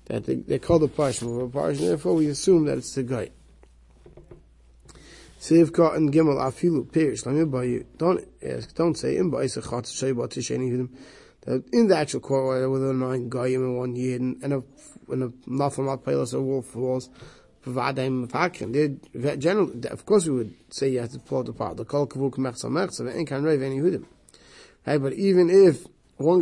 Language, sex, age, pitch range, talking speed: English, male, 30-49, 130-170 Hz, 125 wpm